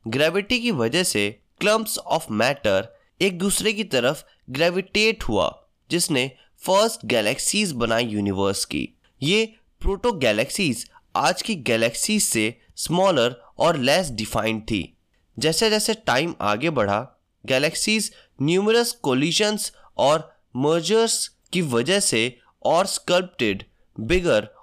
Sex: male